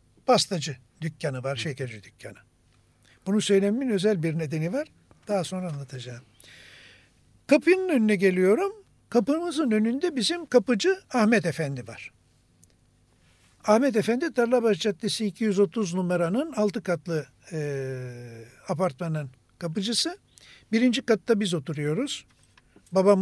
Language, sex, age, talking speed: Turkish, male, 60-79, 105 wpm